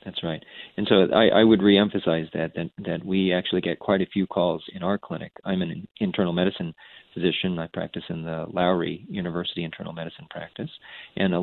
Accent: American